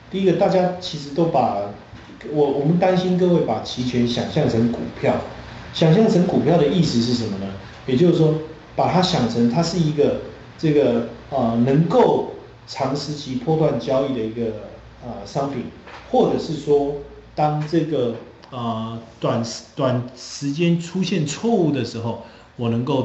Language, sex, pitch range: Chinese, male, 110-145 Hz